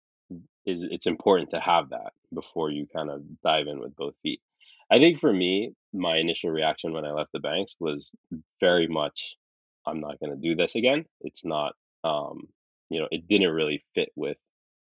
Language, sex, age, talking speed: English, male, 20-39, 190 wpm